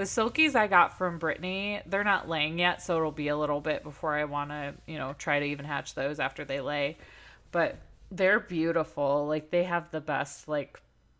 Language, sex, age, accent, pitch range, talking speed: English, female, 20-39, American, 150-190 Hz, 210 wpm